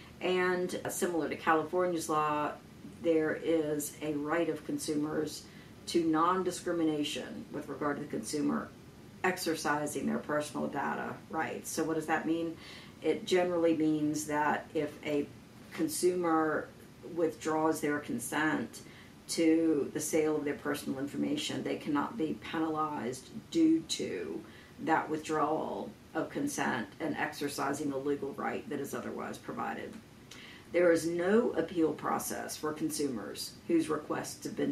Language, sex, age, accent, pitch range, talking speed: English, female, 50-69, American, 155-180 Hz, 130 wpm